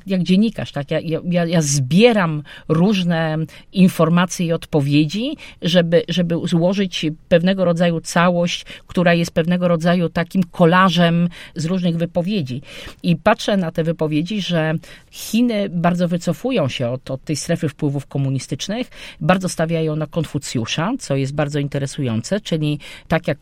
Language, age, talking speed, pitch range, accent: Polish, 40-59, 135 wpm, 150-180 Hz, native